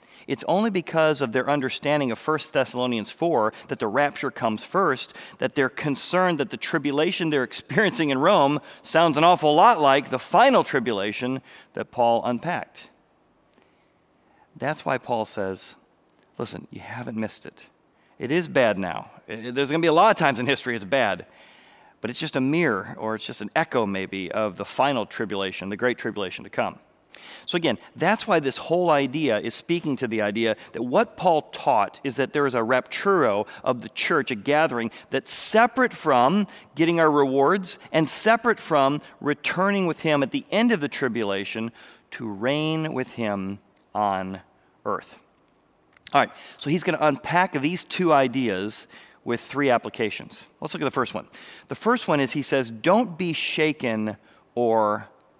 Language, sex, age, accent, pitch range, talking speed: English, male, 40-59, American, 115-160 Hz, 175 wpm